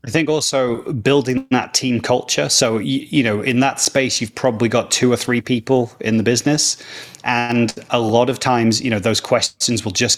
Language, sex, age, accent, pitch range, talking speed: English, male, 30-49, British, 110-130 Hz, 205 wpm